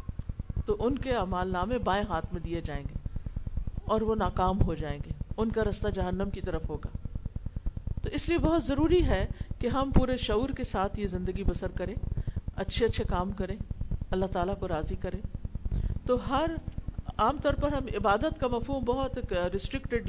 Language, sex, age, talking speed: Urdu, female, 50-69, 180 wpm